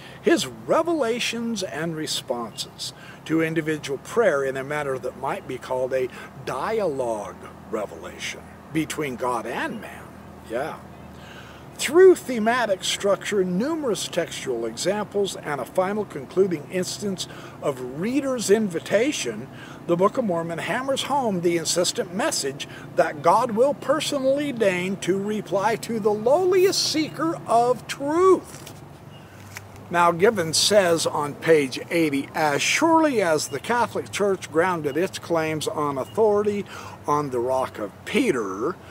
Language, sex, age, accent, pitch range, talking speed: English, male, 50-69, American, 145-205 Hz, 125 wpm